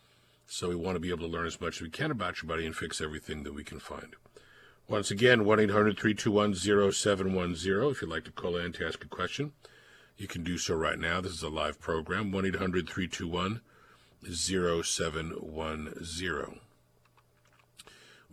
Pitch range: 85-100 Hz